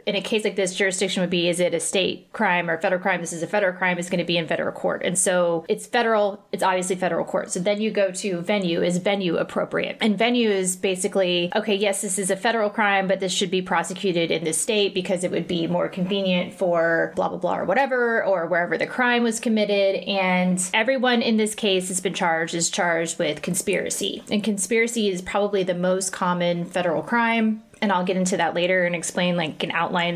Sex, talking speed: female, 225 wpm